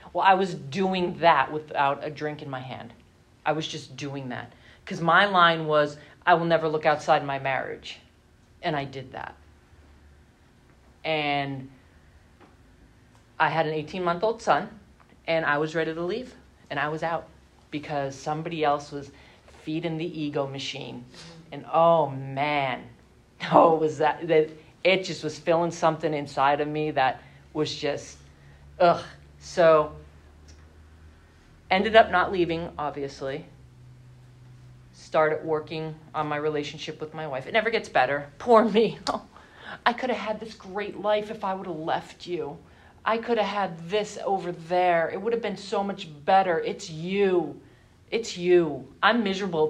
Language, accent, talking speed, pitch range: English, American, 155 wpm, 135-190 Hz